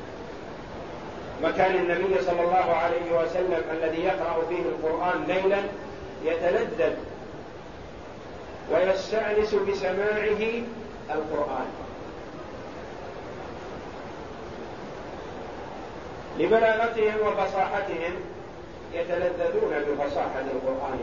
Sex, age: male, 40-59